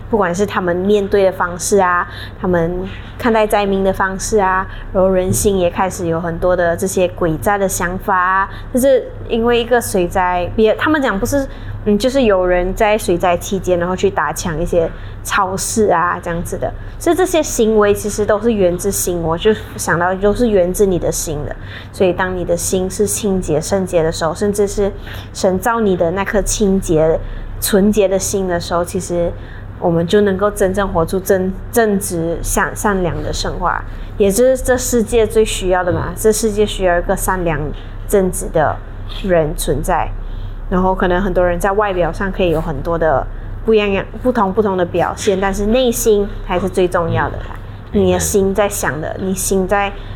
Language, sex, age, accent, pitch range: English, female, 20-39, American, 170-205 Hz